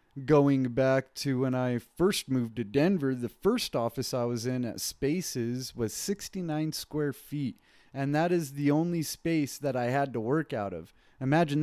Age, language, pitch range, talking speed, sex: 30-49, English, 120-150 Hz, 180 wpm, male